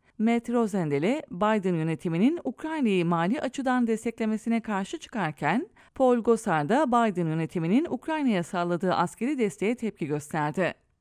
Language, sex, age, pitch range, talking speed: English, female, 30-49, 185-270 Hz, 115 wpm